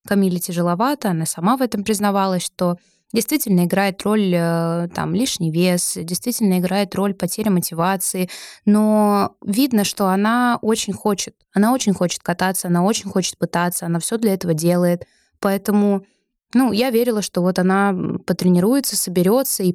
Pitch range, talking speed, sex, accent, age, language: 175-210 Hz, 145 wpm, female, native, 20-39, Russian